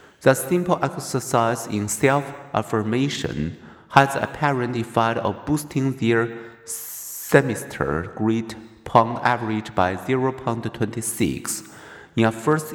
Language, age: Chinese, 50-69